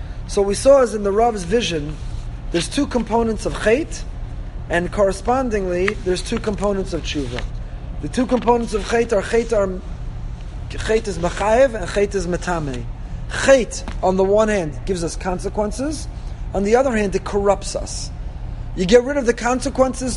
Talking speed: 165 wpm